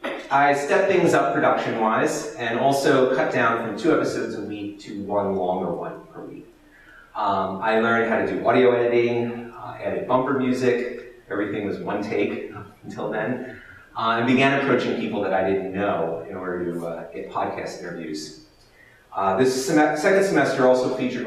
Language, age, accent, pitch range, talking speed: English, 30-49, American, 95-140 Hz, 175 wpm